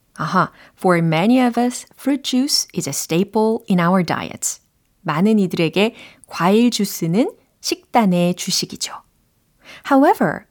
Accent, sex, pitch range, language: native, female, 175-255 Hz, Korean